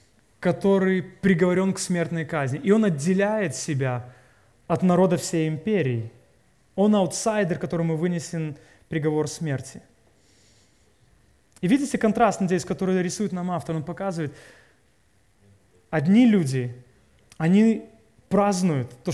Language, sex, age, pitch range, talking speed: Russian, male, 20-39, 155-220 Hz, 105 wpm